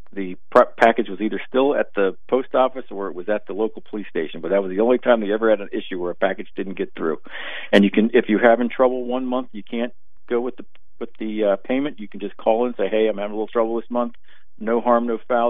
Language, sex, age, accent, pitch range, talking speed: English, male, 50-69, American, 100-120 Hz, 280 wpm